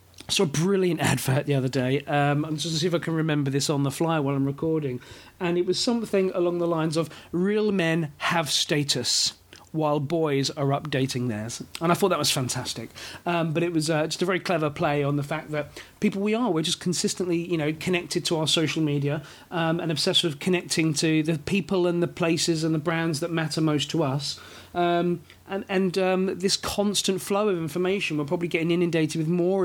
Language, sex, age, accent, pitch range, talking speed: English, male, 40-59, British, 150-180 Hz, 215 wpm